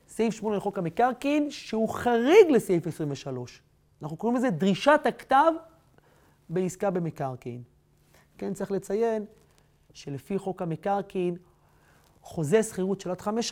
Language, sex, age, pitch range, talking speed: Hebrew, male, 30-49, 170-235 Hz, 115 wpm